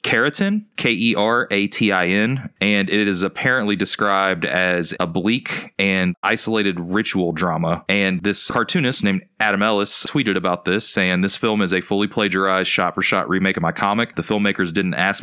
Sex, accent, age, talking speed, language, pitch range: male, American, 30-49, 155 wpm, English, 90-105 Hz